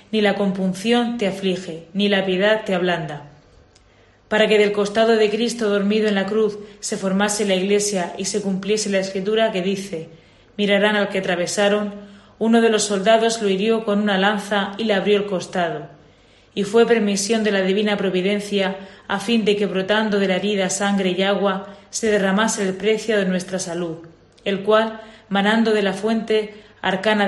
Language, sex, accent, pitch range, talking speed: Spanish, female, Spanish, 190-215 Hz, 180 wpm